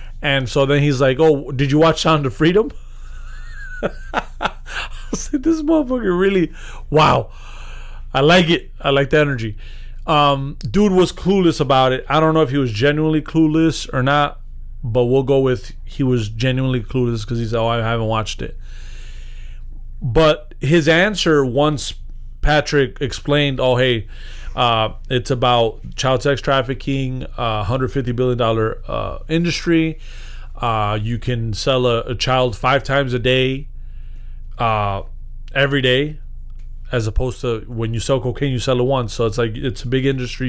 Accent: American